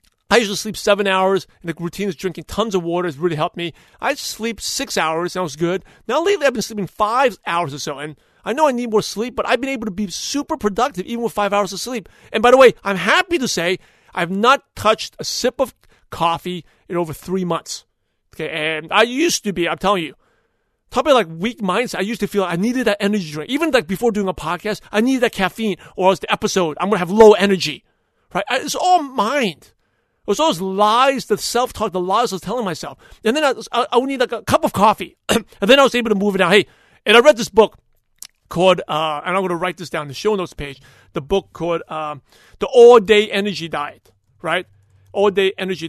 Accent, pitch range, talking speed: American, 170-225 Hz, 245 wpm